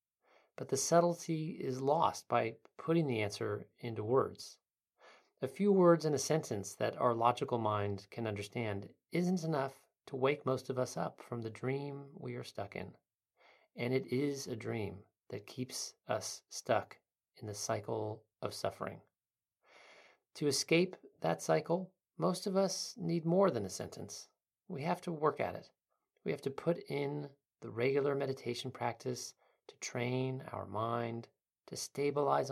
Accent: American